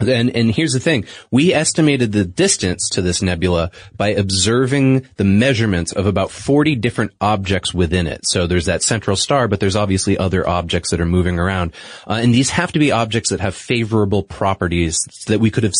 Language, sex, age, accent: English, male, 30-49, American